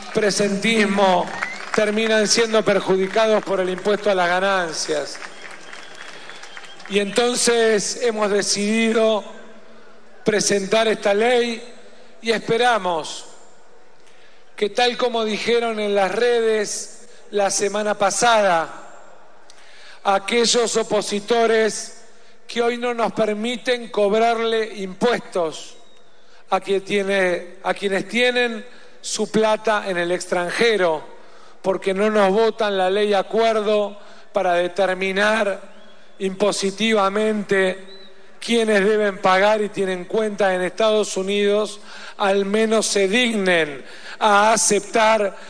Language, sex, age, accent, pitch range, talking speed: Spanish, male, 40-59, Argentinian, 195-225 Hz, 95 wpm